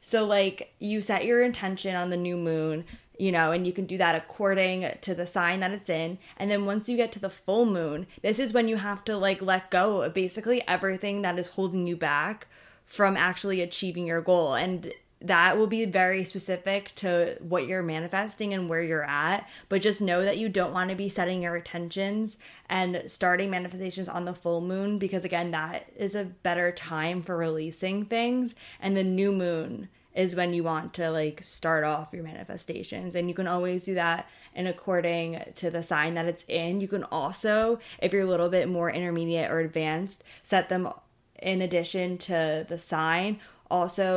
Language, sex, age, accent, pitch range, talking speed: English, female, 20-39, American, 165-190 Hz, 200 wpm